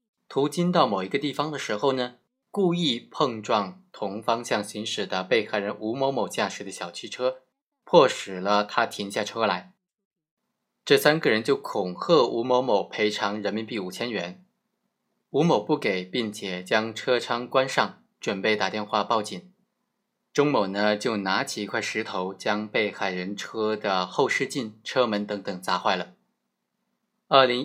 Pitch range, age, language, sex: 105-160 Hz, 20-39, Chinese, male